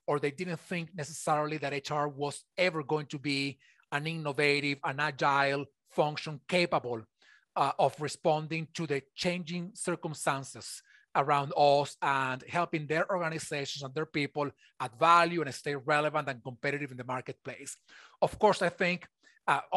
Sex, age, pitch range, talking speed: male, 30-49, 145-170 Hz, 150 wpm